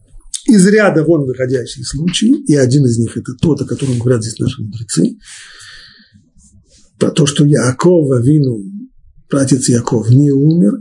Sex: male